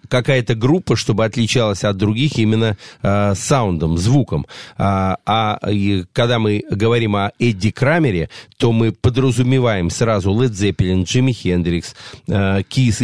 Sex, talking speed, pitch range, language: male, 130 wpm, 110-135 Hz, Russian